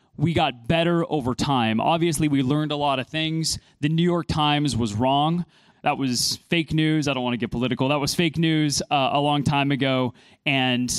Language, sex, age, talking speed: English, male, 20-39, 205 wpm